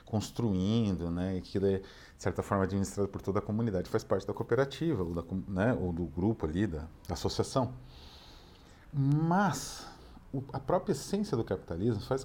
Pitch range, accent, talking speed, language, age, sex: 85-115 Hz, Brazilian, 165 wpm, Portuguese, 40-59, male